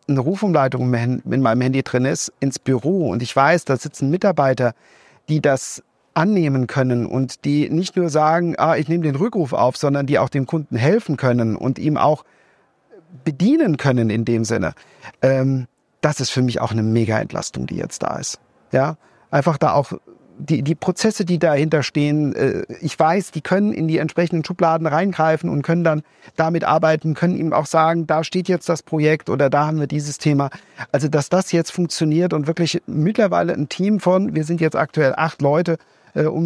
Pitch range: 135-170 Hz